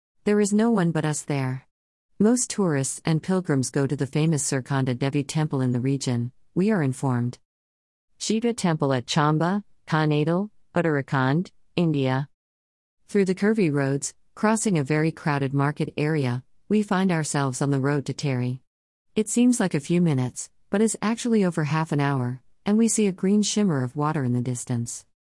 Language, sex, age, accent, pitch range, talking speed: English, female, 40-59, American, 130-165 Hz, 175 wpm